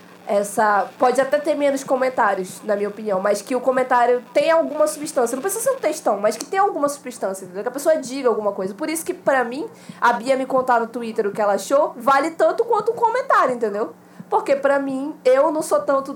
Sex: female